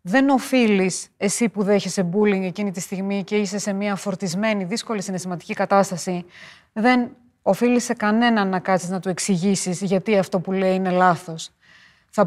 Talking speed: 160 wpm